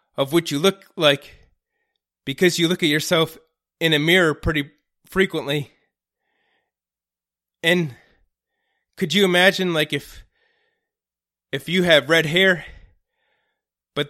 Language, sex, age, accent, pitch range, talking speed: English, male, 20-39, American, 130-185 Hz, 115 wpm